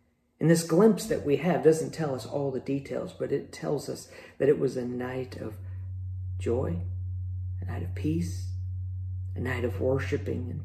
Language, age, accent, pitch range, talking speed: English, 40-59, American, 95-145 Hz, 180 wpm